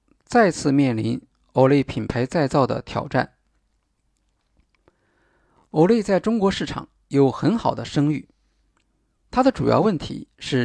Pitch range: 135-195 Hz